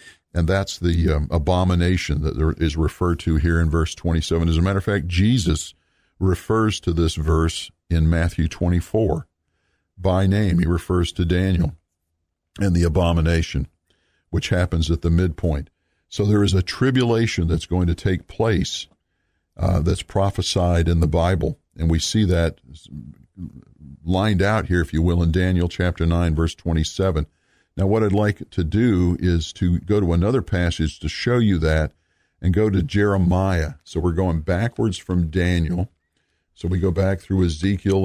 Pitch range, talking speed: 80-95 Hz, 165 wpm